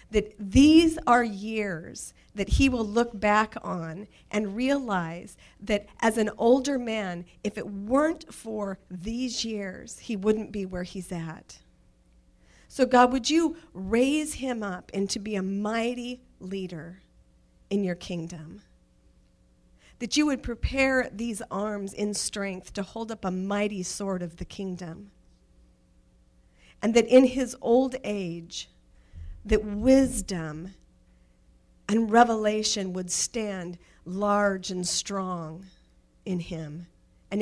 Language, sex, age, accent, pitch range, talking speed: English, female, 40-59, American, 170-225 Hz, 130 wpm